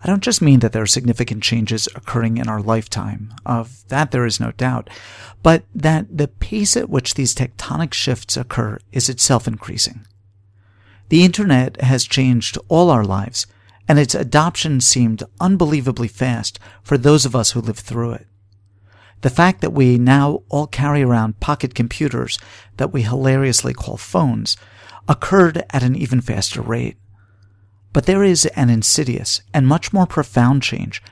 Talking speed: 160 wpm